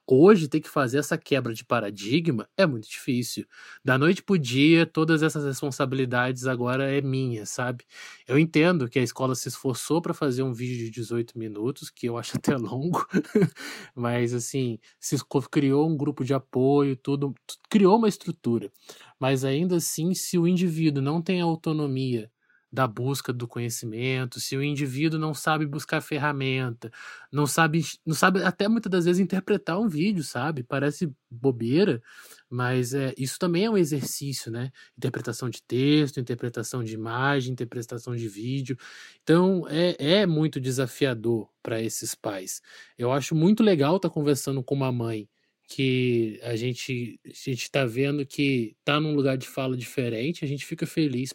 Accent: Brazilian